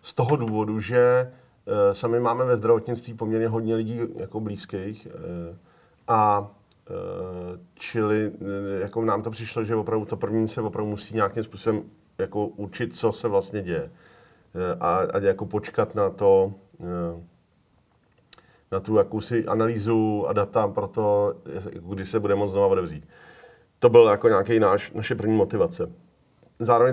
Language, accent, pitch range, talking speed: Czech, native, 100-120 Hz, 155 wpm